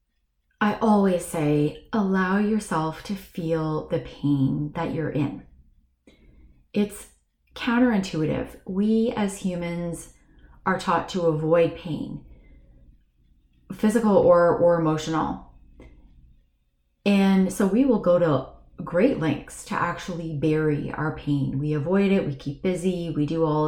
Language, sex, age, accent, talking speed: English, female, 30-49, American, 120 wpm